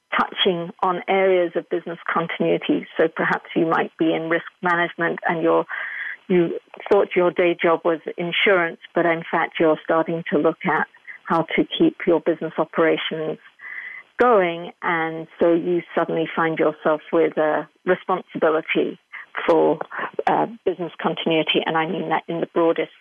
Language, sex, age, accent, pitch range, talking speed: English, female, 50-69, British, 160-195 Hz, 150 wpm